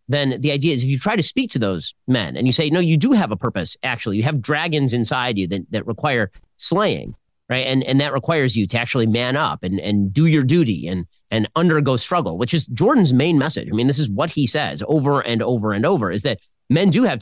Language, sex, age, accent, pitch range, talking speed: English, male, 30-49, American, 115-155 Hz, 250 wpm